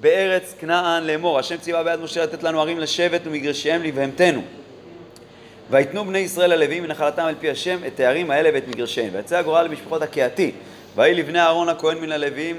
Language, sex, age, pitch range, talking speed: Hebrew, male, 30-49, 150-190 Hz, 170 wpm